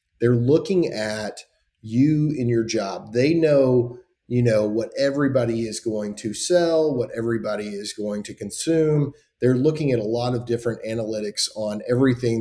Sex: male